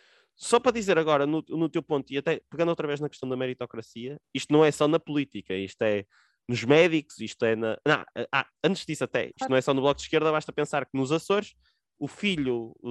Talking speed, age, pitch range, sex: 230 wpm, 20-39, 130-170 Hz, male